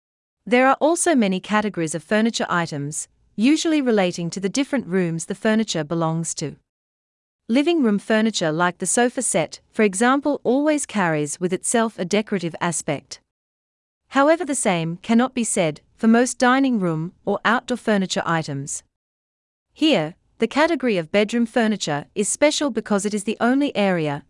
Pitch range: 160-240 Hz